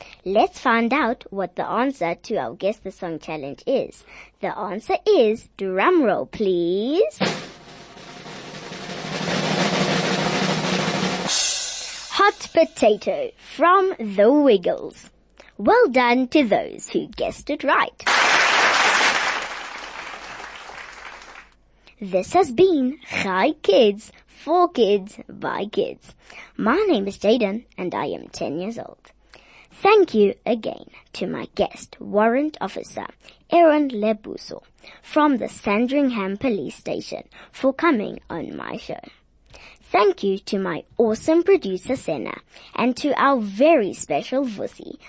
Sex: female